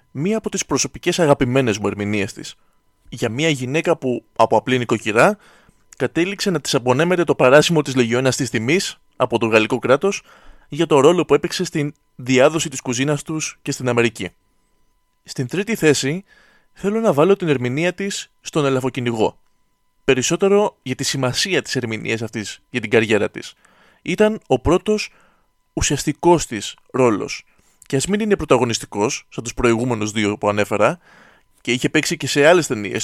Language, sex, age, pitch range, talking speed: Greek, male, 20-39, 125-180 Hz, 160 wpm